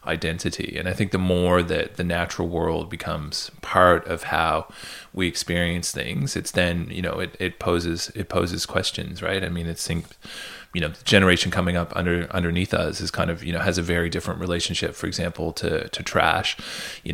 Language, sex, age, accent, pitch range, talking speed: English, male, 20-39, American, 85-95 Hz, 200 wpm